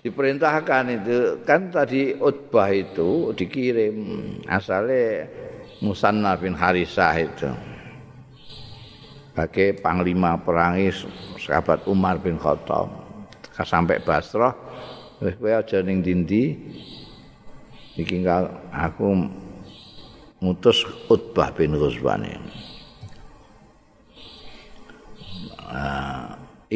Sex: male